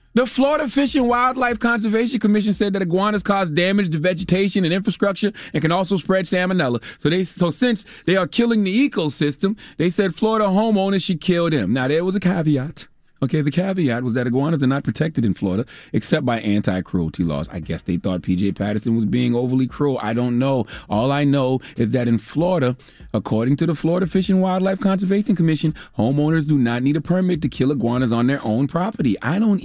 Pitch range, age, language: 135-195 Hz, 30-49, English